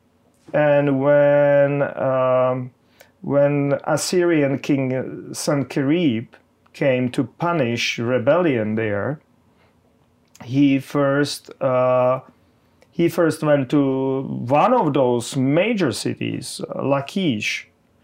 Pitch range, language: 115-135 Hz, English